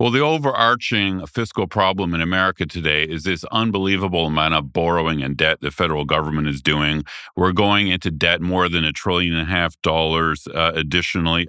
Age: 40-59